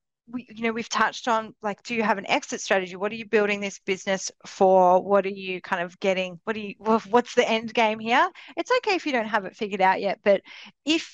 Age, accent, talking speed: 30-49, Australian, 255 wpm